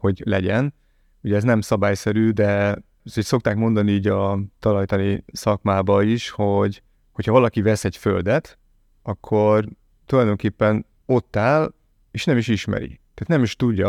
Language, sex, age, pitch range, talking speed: Hungarian, male, 30-49, 95-115 Hz, 140 wpm